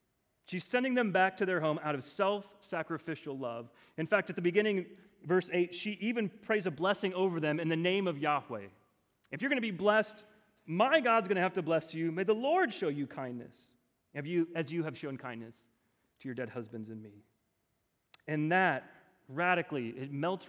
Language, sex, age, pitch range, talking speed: English, male, 30-49, 145-200 Hz, 195 wpm